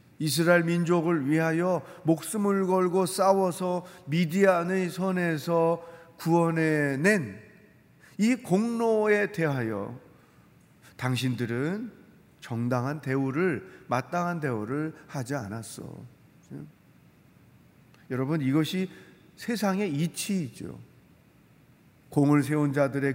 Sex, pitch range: male, 140-175 Hz